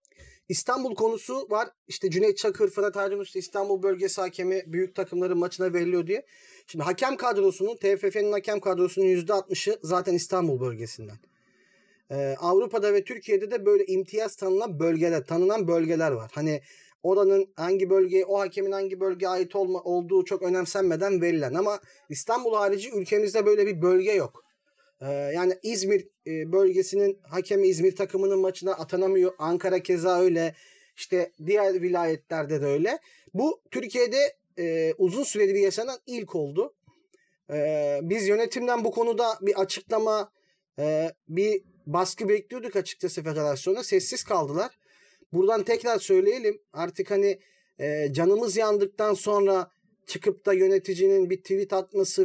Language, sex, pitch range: Turkish, male, 180-220 Hz